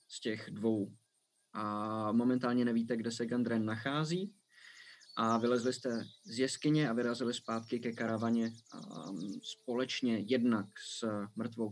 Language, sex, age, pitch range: Czech, male, 20-39, 115-150 Hz